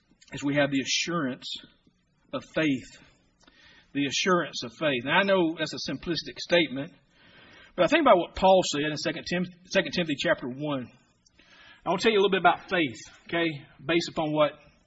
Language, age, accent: English, 50-69, American